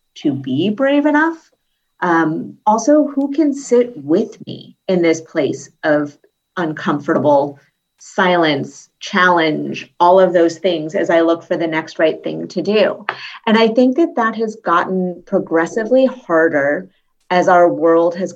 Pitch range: 165-215 Hz